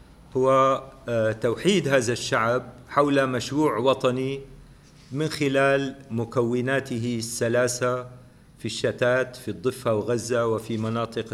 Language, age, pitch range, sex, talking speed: English, 50-69, 110-130 Hz, male, 95 wpm